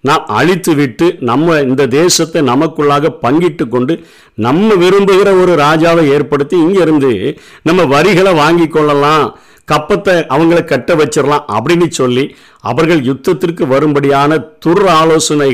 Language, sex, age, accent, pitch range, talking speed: Tamil, male, 50-69, native, 140-170 Hz, 110 wpm